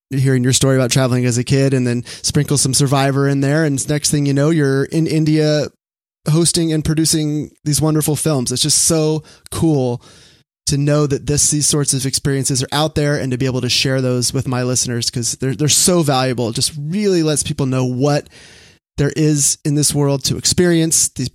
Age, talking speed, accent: 30-49, 210 wpm, American